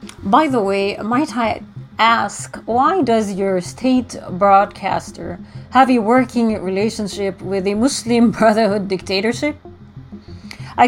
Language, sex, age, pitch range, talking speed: English, female, 30-49, 180-240 Hz, 115 wpm